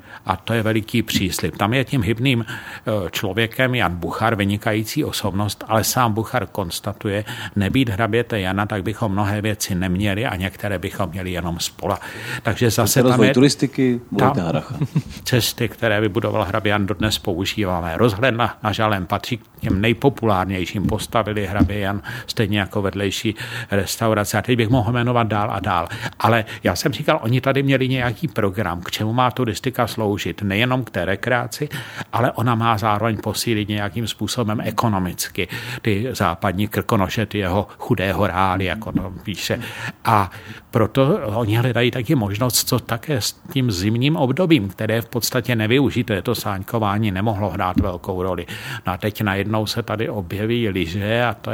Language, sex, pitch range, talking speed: Czech, male, 100-120 Hz, 160 wpm